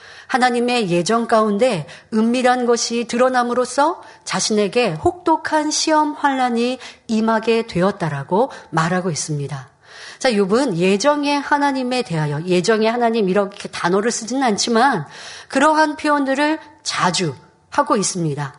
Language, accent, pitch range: Korean, native, 195-280 Hz